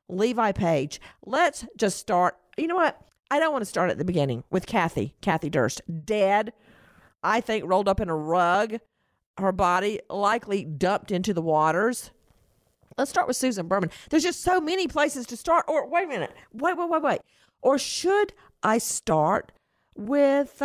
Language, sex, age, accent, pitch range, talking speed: English, female, 50-69, American, 170-255 Hz, 175 wpm